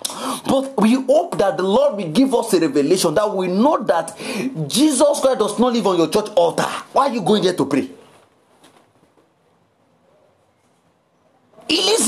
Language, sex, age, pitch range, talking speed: English, male, 40-59, 210-280 Hz, 165 wpm